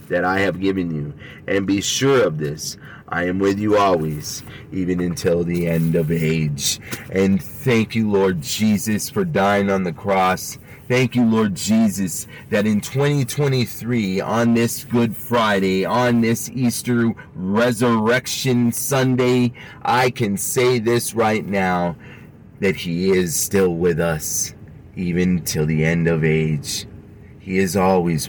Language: English